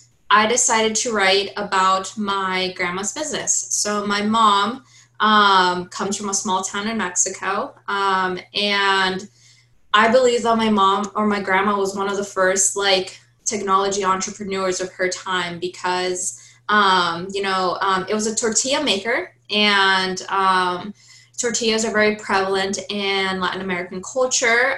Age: 20-39